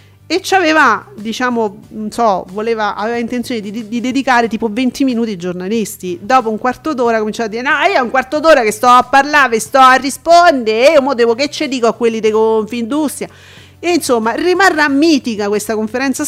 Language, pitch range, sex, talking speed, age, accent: Italian, 215-280 Hz, female, 195 wpm, 40-59, native